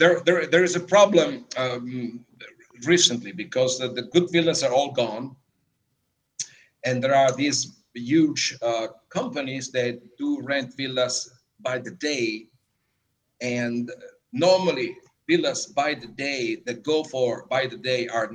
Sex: male